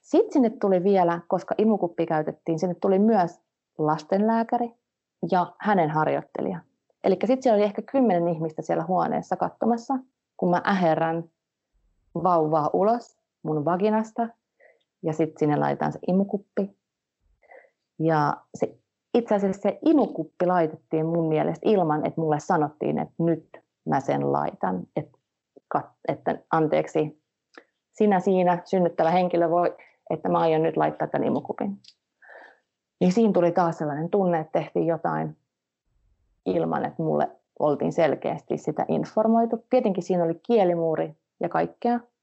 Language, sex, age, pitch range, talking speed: English, female, 30-49, 160-210 Hz, 130 wpm